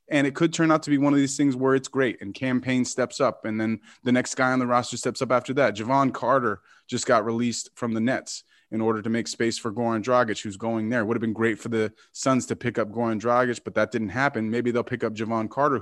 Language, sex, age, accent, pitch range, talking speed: English, male, 20-39, American, 110-130 Hz, 270 wpm